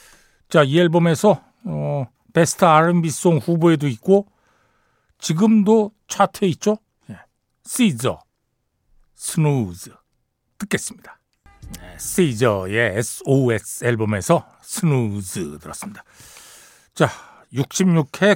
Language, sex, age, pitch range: Korean, male, 60-79, 120-185 Hz